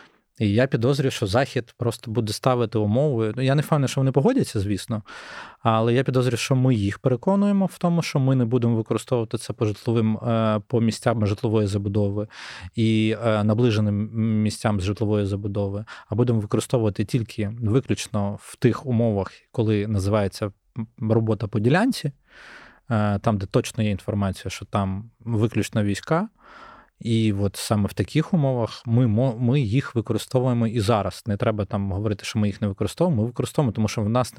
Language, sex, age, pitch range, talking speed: Ukrainian, male, 20-39, 105-125 Hz, 160 wpm